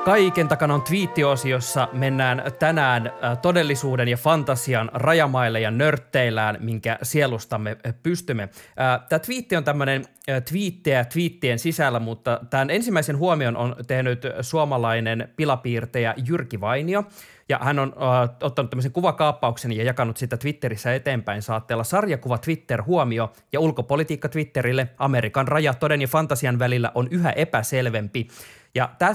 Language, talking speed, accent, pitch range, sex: Finnish, 125 wpm, native, 125-160 Hz, male